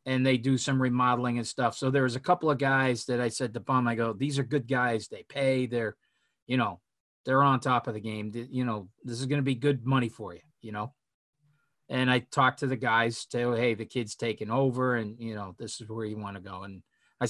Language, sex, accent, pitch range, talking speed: English, male, American, 120-160 Hz, 255 wpm